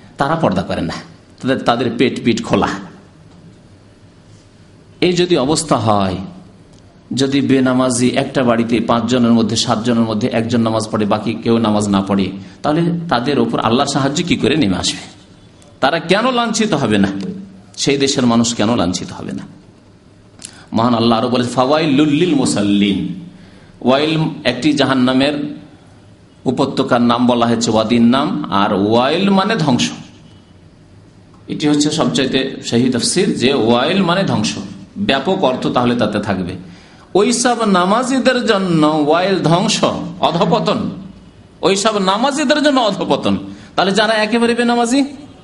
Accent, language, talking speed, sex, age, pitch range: native, Bengali, 100 wpm, male, 50-69, 110-185 Hz